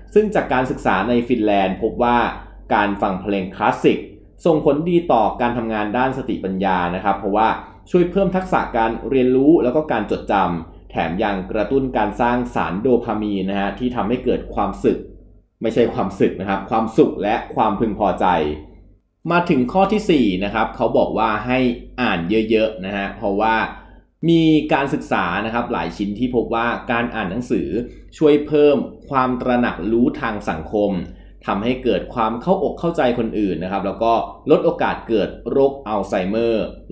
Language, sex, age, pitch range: Thai, male, 20-39, 100-125 Hz